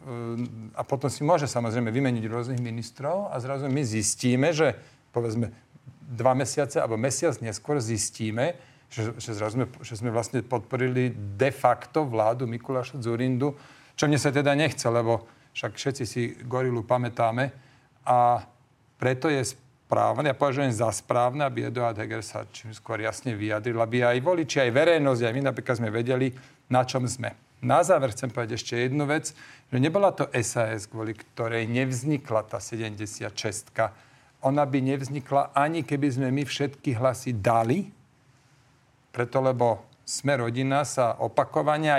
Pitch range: 120-140 Hz